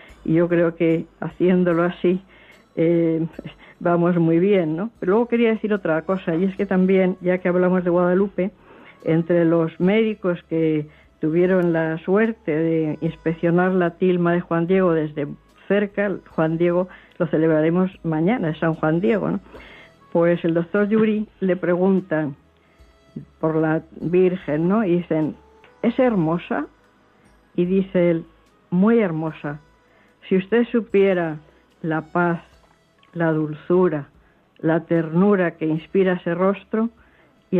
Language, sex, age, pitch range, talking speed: Spanish, female, 60-79, 165-190 Hz, 135 wpm